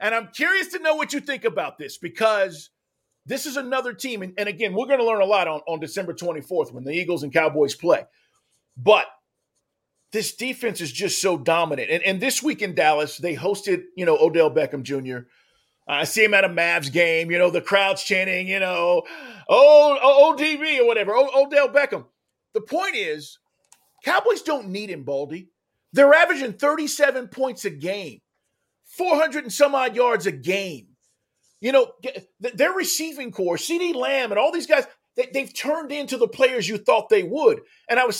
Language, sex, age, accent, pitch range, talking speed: English, male, 50-69, American, 185-305 Hz, 185 wpm